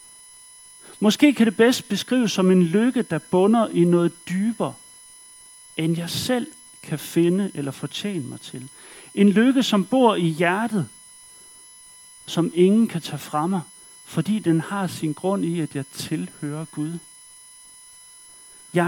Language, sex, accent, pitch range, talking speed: Danish, male, native, 165-255 Hz, 145 wpm